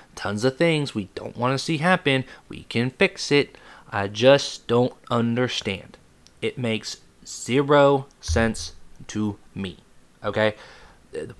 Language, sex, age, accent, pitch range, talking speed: English, male, 20-39, American, 110-140 Hz, 130 wpm